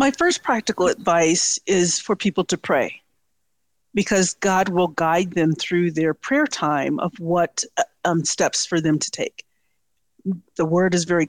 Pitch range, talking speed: 170-230 Hz, 160 wpm